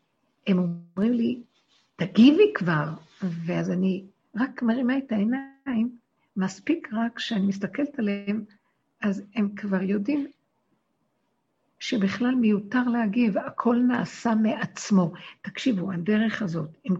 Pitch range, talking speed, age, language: 190-230 Hz, 105 wpm, 60-79, Hebrew